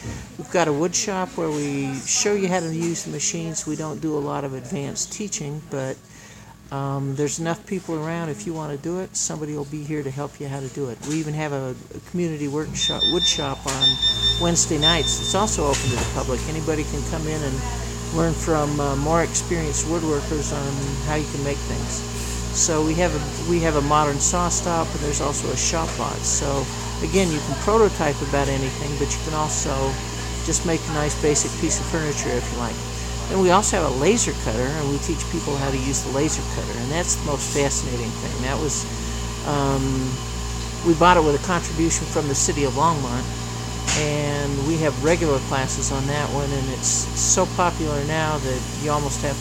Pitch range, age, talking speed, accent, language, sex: 130-155 Hz, 60-79, 210 wpm, American, English, male